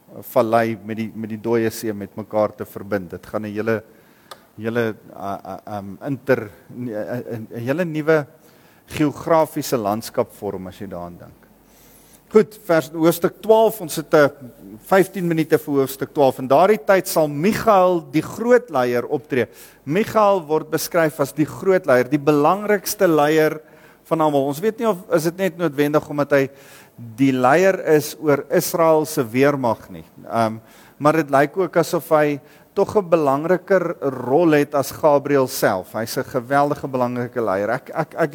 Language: English